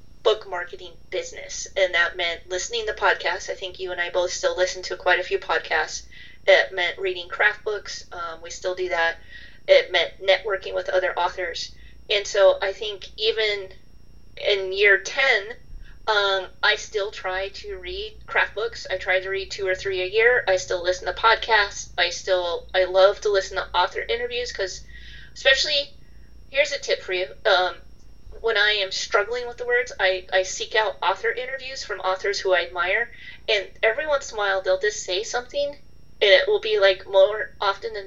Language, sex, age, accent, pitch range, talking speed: English, female, 30-49, American, 190-270 Hz, 190 wpm